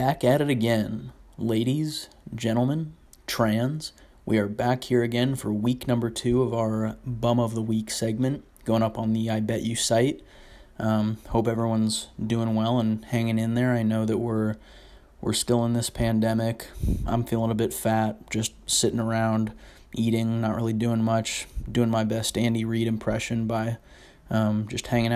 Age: 20-39